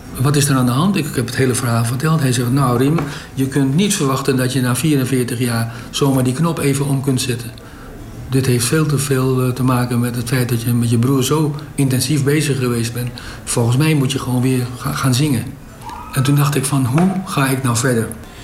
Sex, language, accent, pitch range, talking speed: male, Dutch, Dutch, 120-145 Hz, 230 wpm